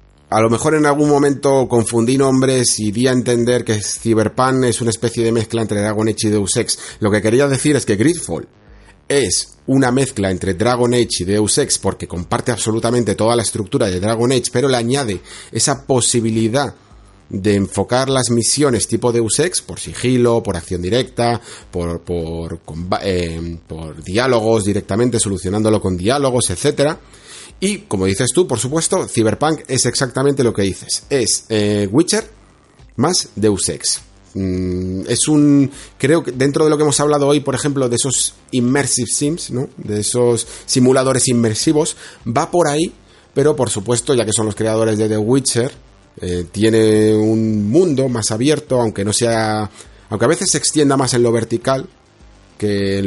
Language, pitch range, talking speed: Spanish, 105-130 Hz, 170 wpm